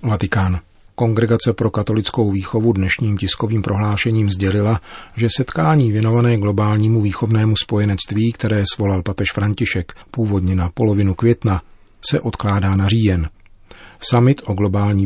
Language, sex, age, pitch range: Czech, male, 40-59, 95-110 Hz